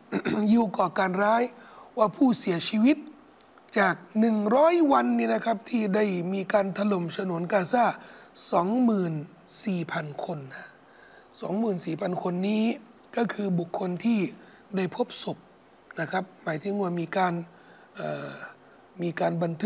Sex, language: male, Thai